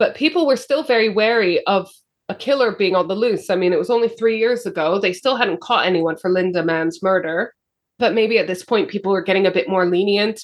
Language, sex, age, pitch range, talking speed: English, female, 20-39, 185-235 Hz, 240 wpm